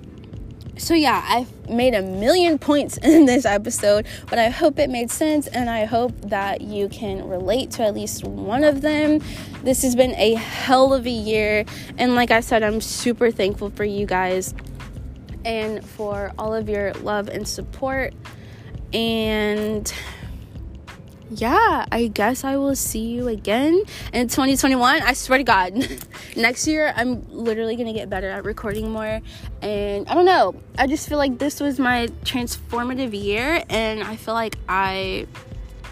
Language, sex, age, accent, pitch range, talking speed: English, female, 20-39, American, 195-255 Hz, 165 wpm